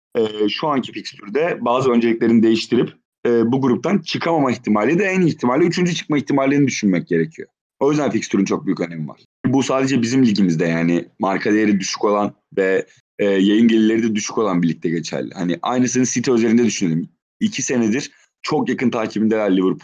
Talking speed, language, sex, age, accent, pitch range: 175 wpm, Turkish, male, 30-49, native, 105-125 Hz